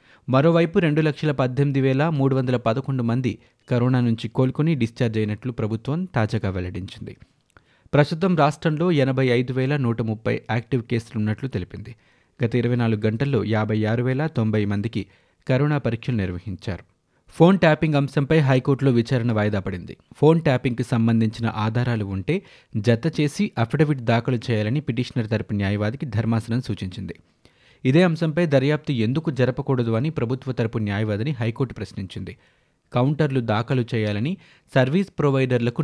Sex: male